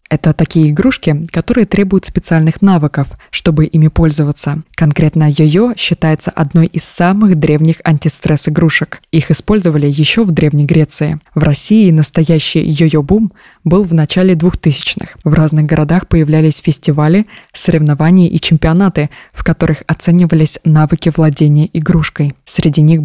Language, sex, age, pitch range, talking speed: Russian, female, 20-39, 155-175 Hz, 130 wpm